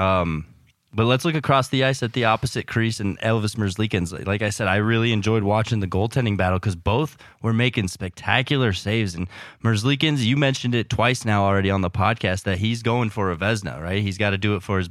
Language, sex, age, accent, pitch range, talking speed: English, male, 20-39, American, 100-120 Hz, 220 wpm